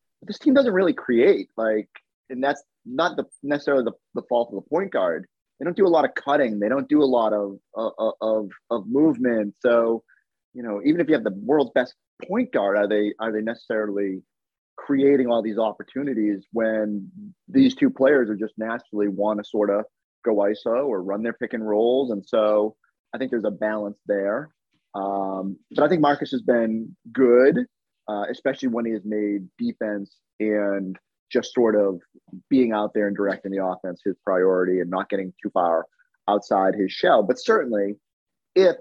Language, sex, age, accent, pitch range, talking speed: English, male, 30-49, American, 105-150 Hz, 190 wpm